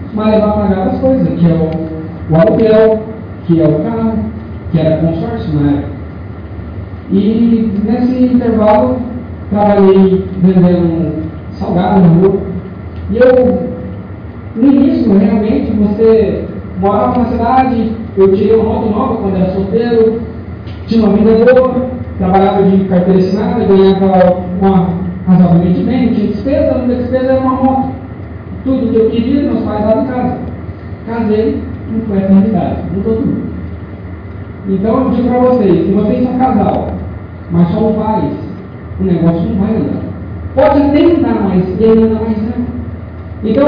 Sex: male